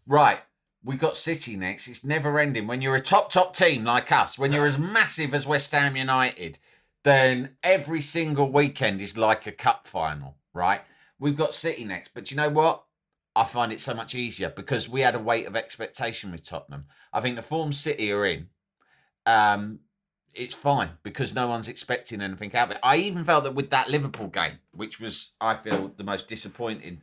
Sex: male